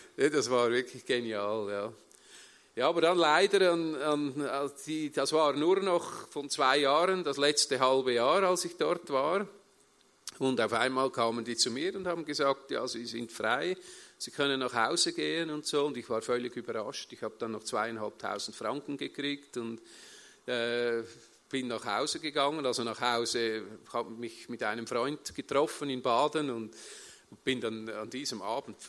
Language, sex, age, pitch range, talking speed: German, male, 40-59, 120-150 Hz, 175 wpm